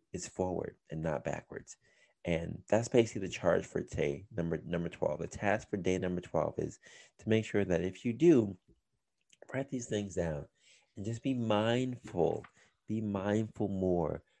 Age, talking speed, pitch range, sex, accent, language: 30-49, 165 wpm, 95-125 Hz, male, American, English